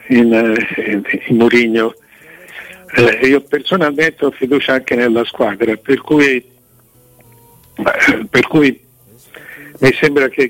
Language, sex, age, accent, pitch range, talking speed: Italian, male, 60-79, native, 125-150 Hz, 95 wpm